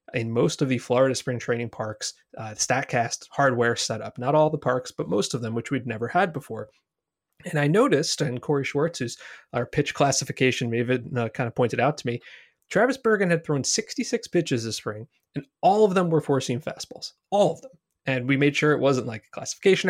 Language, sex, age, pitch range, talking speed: English, male, 30-49, 125-160 Hz, 200 wpm